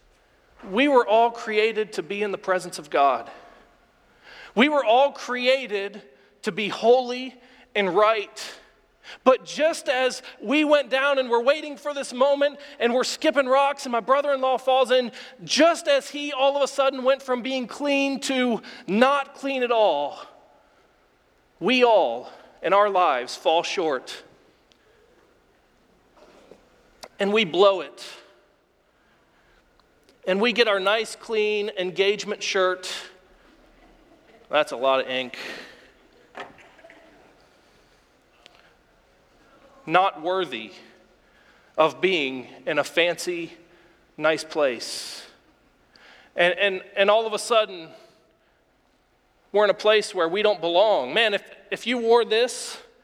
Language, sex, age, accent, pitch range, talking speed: English, male, 40-59, American, 200-260 Hz, 125 wpm